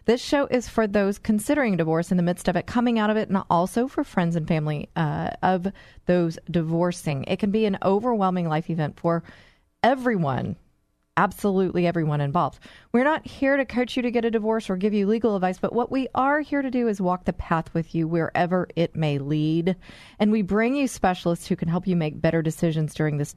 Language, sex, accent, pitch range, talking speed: English, female, American, 155-210 Hz, 215 wpm